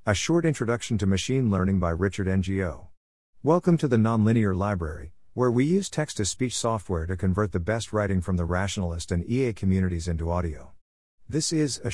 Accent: American